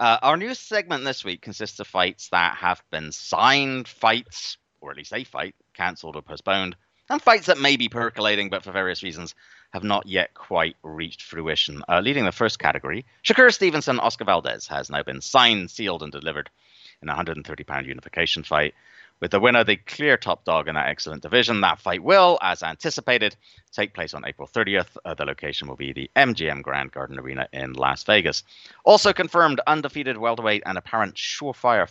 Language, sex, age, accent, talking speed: English, male, 30-49, British, 190 wpm